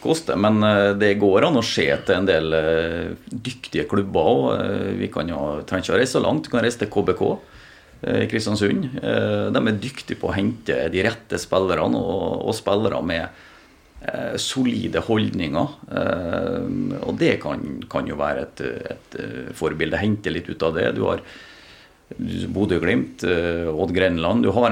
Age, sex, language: 40-59, male, English